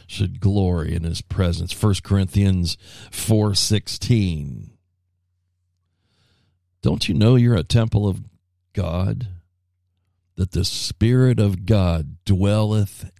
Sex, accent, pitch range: male, American, 90-100 Hz